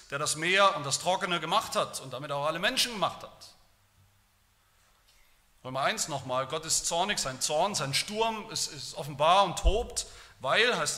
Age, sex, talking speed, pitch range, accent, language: 40-59, male, 175 wpm, 140-205 Hz, German, German